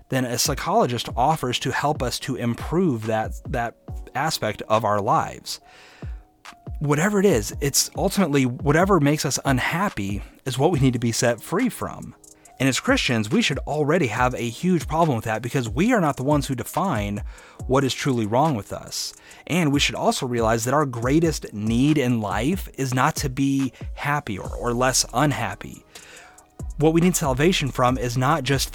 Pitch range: 115-145 Hz